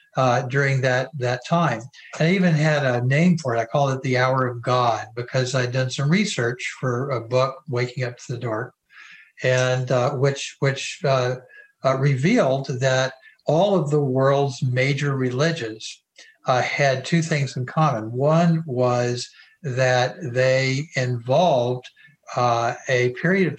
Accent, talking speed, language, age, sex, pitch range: American, 160 wpm, English, 60-79, male, 125-150 Hz